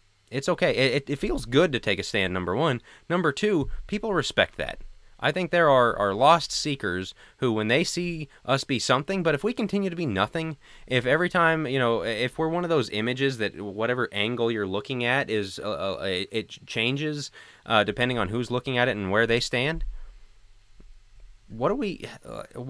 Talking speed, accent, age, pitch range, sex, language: 200 wpm, American, 20-39, 105-145 Hz, male, English